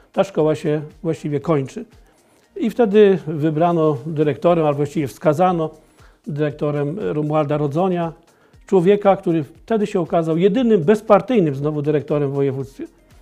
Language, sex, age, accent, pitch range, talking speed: Polish, male, 40-59, native, 150-185 Hz, 120 wpm